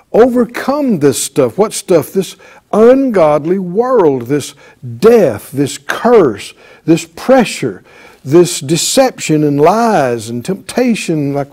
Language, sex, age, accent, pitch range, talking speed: English, male, 60-79, American, 170-250 Hz, 110 wpm